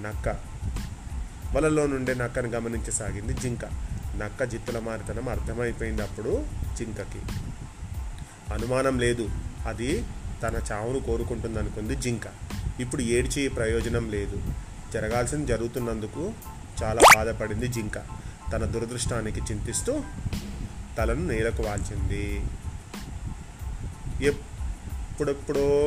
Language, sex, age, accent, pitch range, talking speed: Telugu, male, 30-49, native, 105-145 Hz, 80 wpm